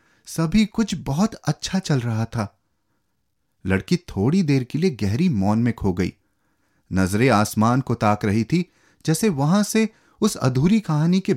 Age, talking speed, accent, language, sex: 30-49, 160 wpm, native, Hindi, male